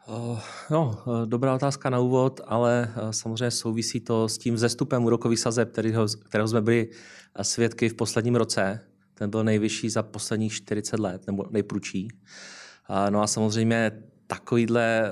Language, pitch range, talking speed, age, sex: Czech, 100-115 Hz, 135 wpm, 30-49, male